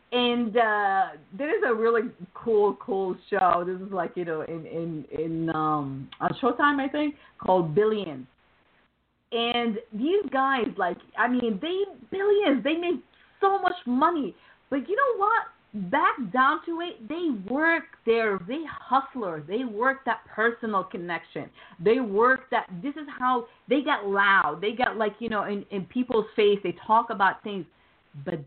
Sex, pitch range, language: female, 170-250 Hz, English